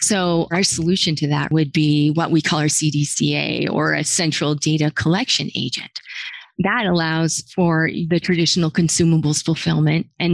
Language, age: English, 30-49